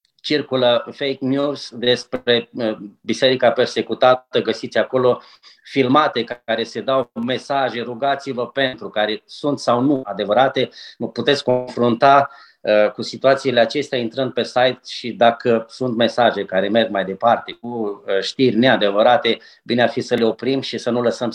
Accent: native